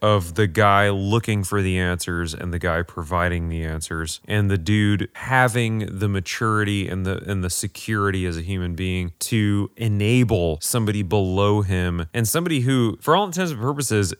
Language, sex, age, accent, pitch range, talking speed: English, male, 30-49, American, 95-125 Hz, 175 wpm